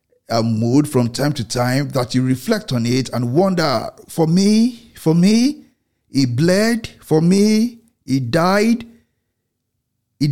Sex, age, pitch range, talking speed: male, 50-69, 120-175 Hz, 140 wpm